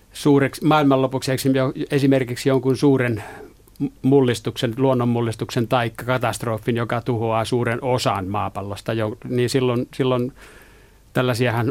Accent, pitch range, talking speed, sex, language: native, 110-130 Hz, 90 wpm, male, Finnish